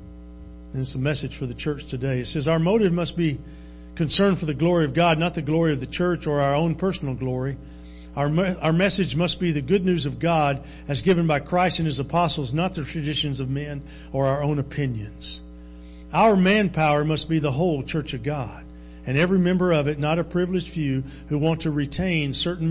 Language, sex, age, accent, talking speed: English, male, 50-69, American, 215 wpm